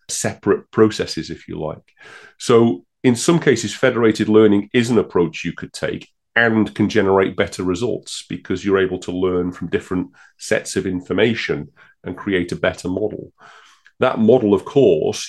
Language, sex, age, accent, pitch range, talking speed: English, male, 30-49, British, 90-115 Hz, 160 wpm